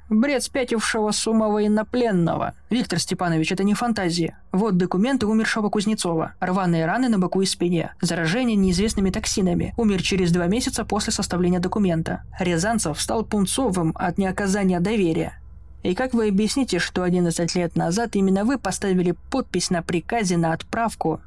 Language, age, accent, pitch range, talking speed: Russian, 20-39, native, 175-210 Hz, 145 wpm